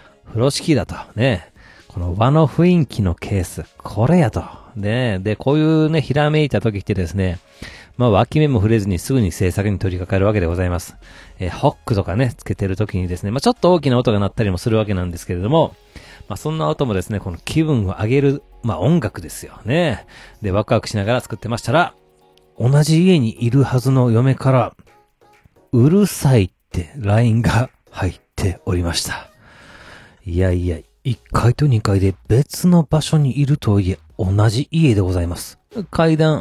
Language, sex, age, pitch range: Japanese, male, 40-59, 95-135 Hz